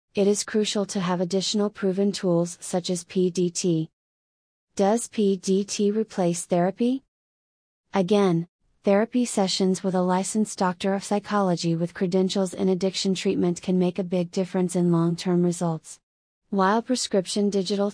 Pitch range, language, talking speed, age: 175-200 Hz, English, 135 wpm, 30-49